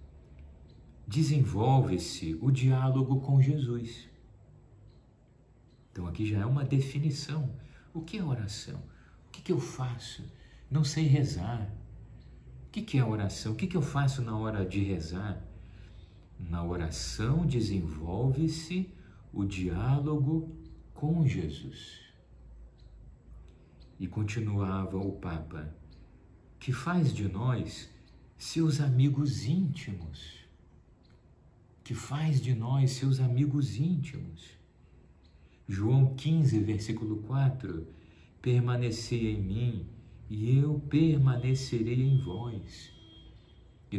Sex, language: male, Portuguese